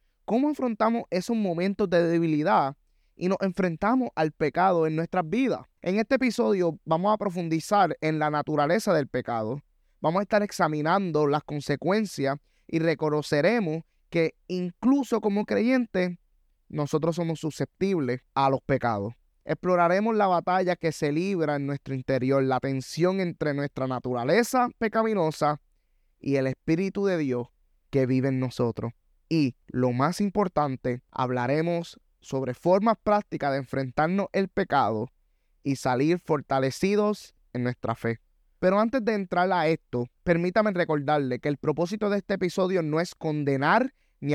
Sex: male